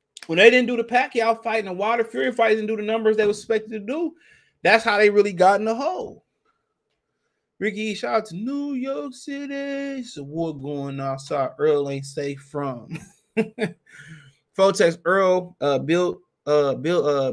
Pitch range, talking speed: 140-225 Hz, 185 wpm